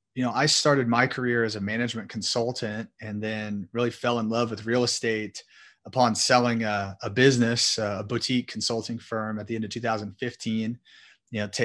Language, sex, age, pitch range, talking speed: English, male, 30-49, 110-125 Hz, 170 wpm